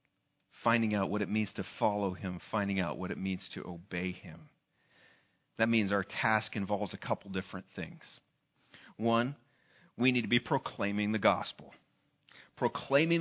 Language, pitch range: English, 130-205 Hz